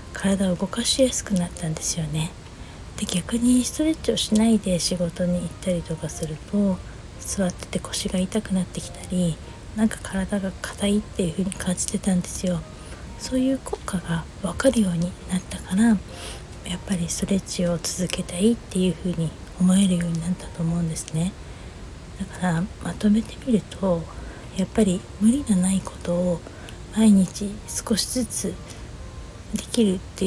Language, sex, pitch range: Japanese, female, 170-205 Hz